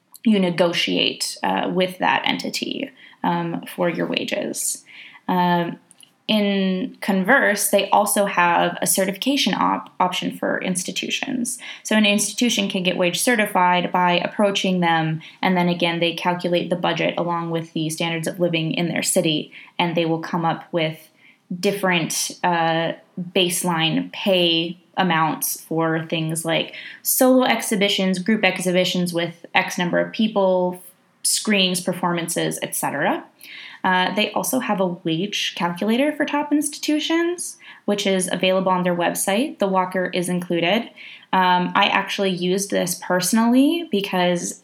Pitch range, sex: 175-200 Hz, female